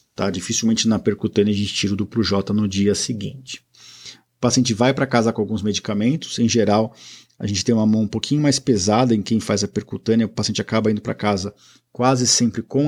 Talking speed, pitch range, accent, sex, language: 210 wpm, 105-125 Hz, Brazilian, male, Portuguese